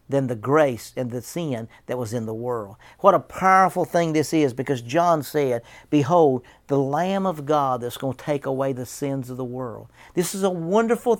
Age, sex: 50-69, male